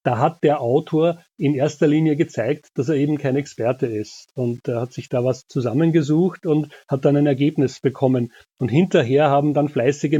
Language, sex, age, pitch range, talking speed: German, male, 30-49, 125-150 Hz, 190 wpm